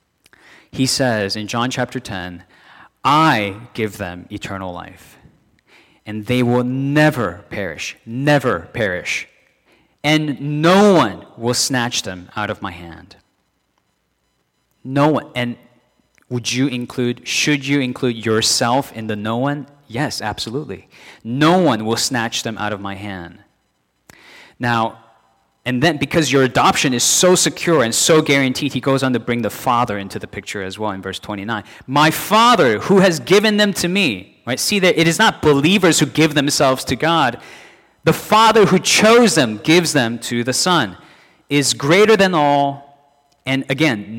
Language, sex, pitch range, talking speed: English, male, 110-150 Hz, 160 wpm